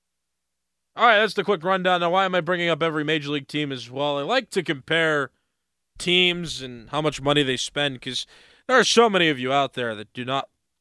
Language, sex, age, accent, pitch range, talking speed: English, male, 20-39, American, 125-150 Hz, 230 wpm